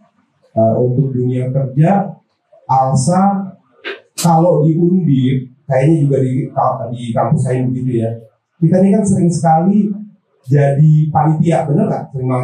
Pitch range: 120-155 Hz